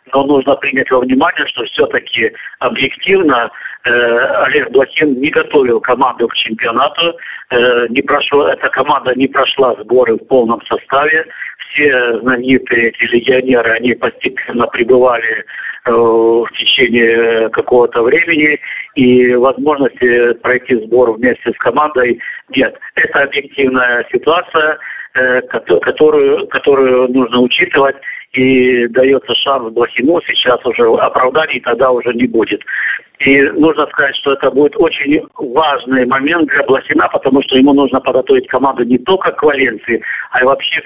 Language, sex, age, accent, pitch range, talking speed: Russian, male, 50-69, native, 125-160 Hz, 130 wpm